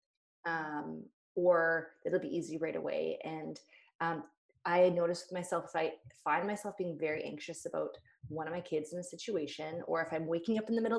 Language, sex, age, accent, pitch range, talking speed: English, female, 20-39, American, 160-195 Hz, 195 wpm